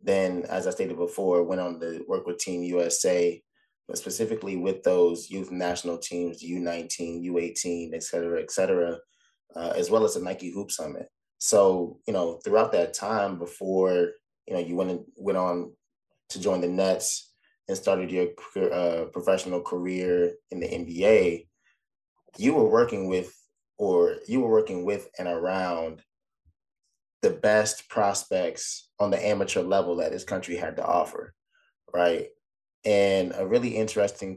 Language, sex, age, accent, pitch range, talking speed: English, male, 20-39, American, 90-115 Hz, 155 wpm